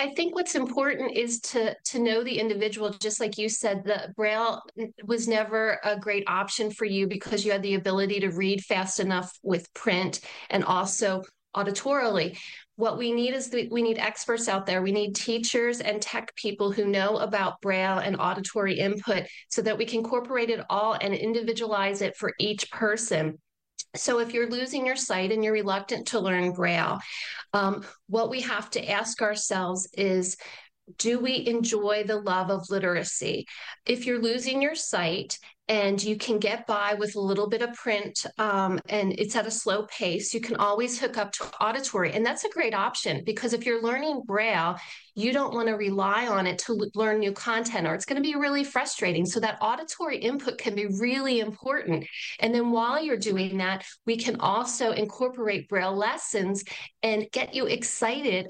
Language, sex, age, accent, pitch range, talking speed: English, female, 40-59, American, 200-235 Hz, 185 wpm